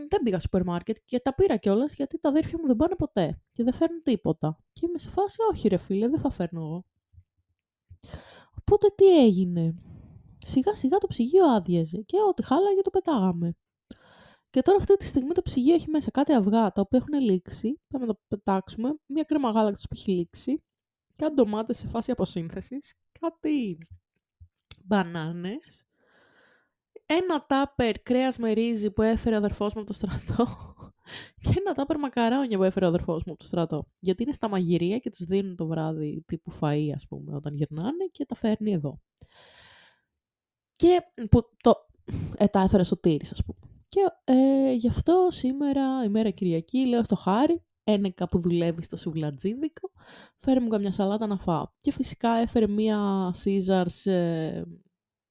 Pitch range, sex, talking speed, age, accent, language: 180-285 Hz, female, 165 wpm, 20-39, native, Greek